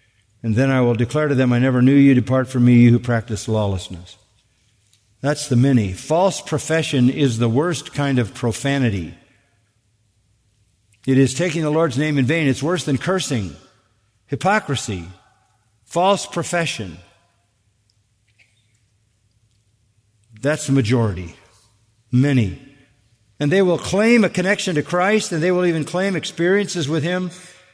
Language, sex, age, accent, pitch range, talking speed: English, male, 50-69, American, 110-160 Hz, 140 wpm